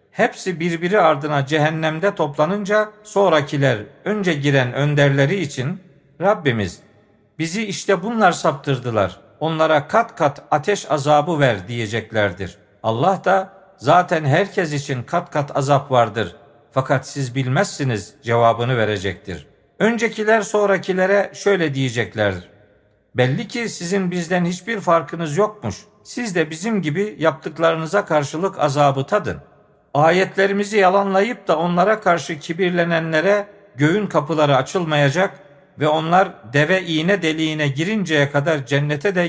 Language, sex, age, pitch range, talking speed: Turkish, male, 50-69, 140-190 Hz, 110 wpm